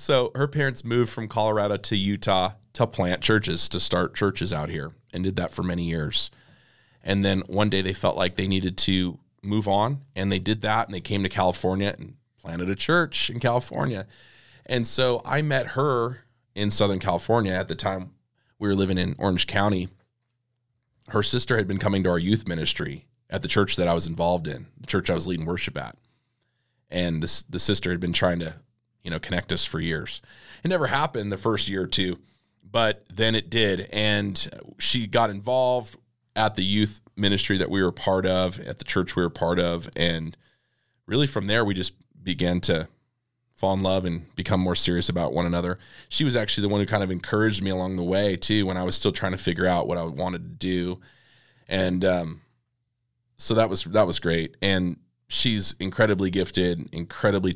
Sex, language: male, English